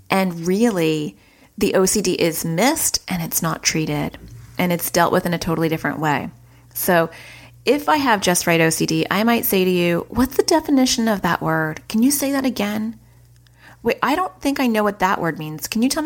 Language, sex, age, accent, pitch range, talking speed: English, female, 30-49, American, 165-220 Hz, 205 wpm